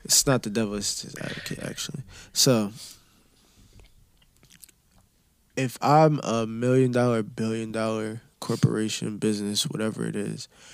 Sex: male